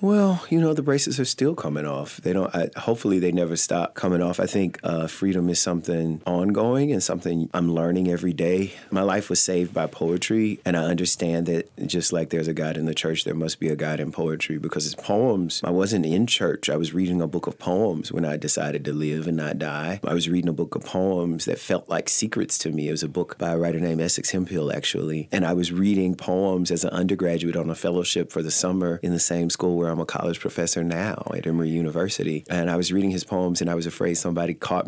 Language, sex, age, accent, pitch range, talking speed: English, male, 30-49, American, 80-90 Hz, 245 wpm